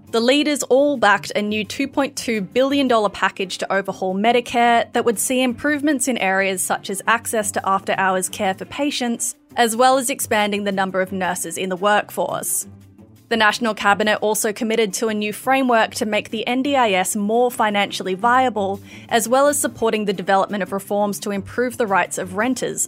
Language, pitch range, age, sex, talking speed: English, 195-235 Hz, 20-39, female, 175 wpm